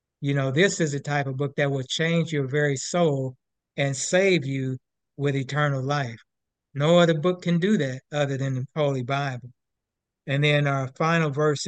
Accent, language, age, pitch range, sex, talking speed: American, English, 60-79, 135-160 Hz, male, 185 wpm